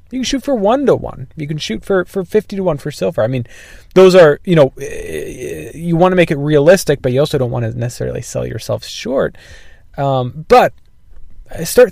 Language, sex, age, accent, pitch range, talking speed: English, male, 20-39, American, 110-150 Hz, 210 wpm